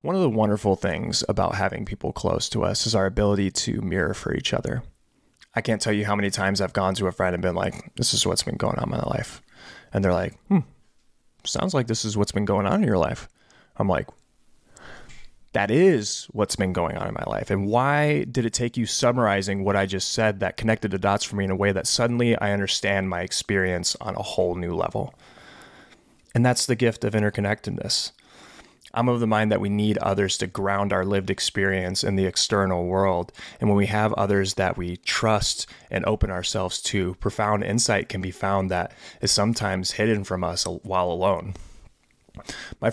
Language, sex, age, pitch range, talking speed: English, male, 20-39, 95-110 Hz, 210 wpm